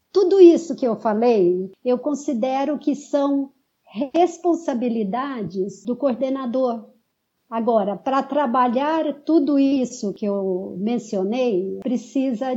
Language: Portuguese